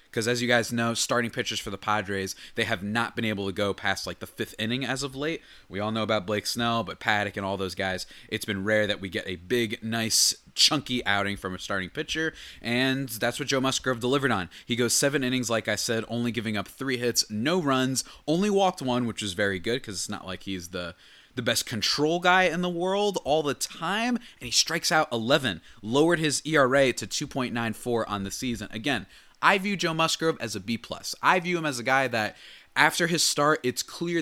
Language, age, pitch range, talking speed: English, 20-39, 105-145 Hz, 230 wpm